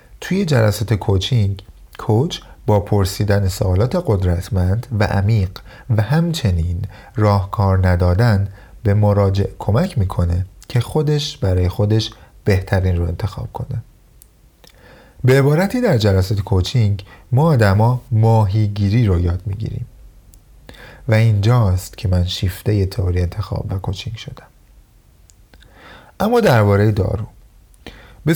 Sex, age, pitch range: male, 30-49, 95-120 Hz